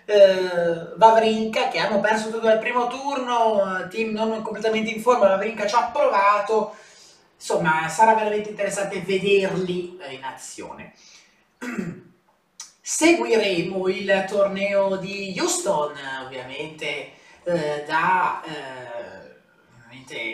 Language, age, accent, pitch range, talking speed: Italian, 30-49, native, 185-235 Hz, 105 wpm